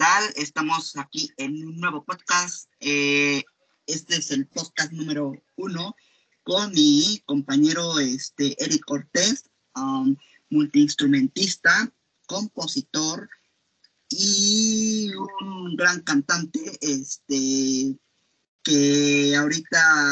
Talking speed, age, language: 85 wpm, 20-39, Spanish